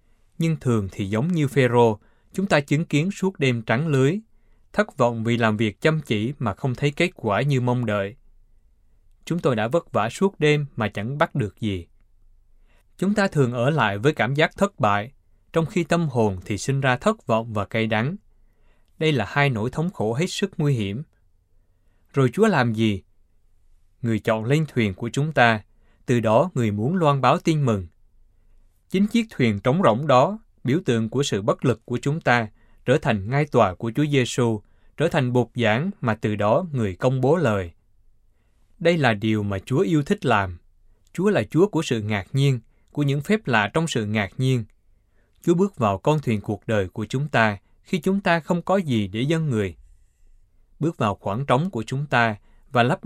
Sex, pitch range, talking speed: male, 105-145 Hz, 200 wpm